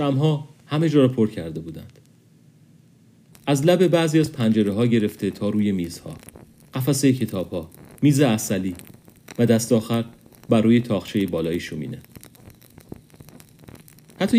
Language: Persian